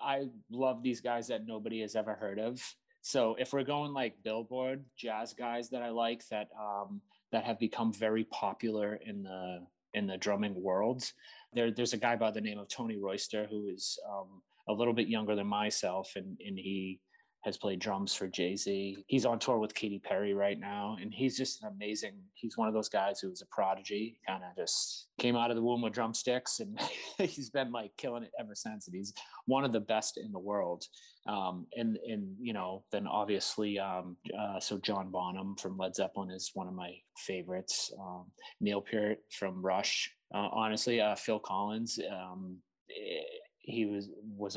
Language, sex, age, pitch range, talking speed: English, male, 30-49, 95-115 Hz, 195 wpm